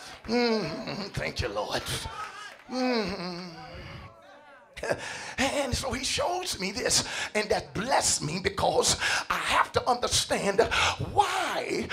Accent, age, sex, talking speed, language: American, 50-69, male, 105 wpm, English